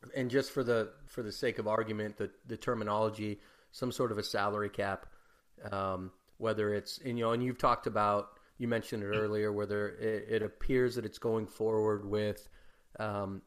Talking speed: 185 wpm